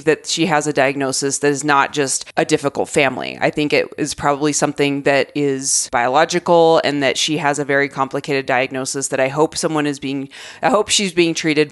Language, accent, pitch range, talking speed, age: English, American, 145-175 Hz, 205 wpm, 30-49